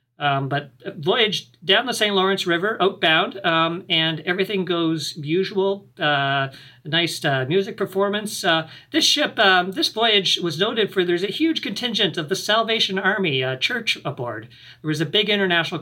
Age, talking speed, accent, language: 50-69, 170 wpm, American, English